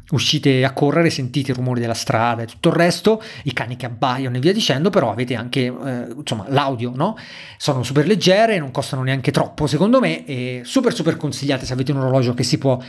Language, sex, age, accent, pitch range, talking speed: Italian, male, 30-49, native, 135-180 Hz, 215 wpm